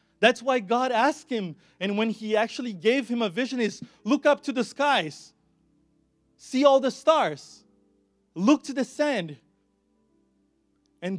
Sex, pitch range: male, 145-200 Hz